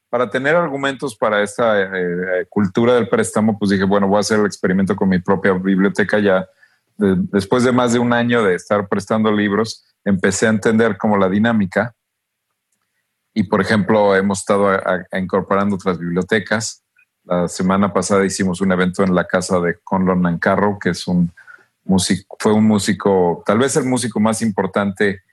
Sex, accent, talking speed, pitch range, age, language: male, Mexican, 175 wpm, 95-115 Hz, 40-59, Spanish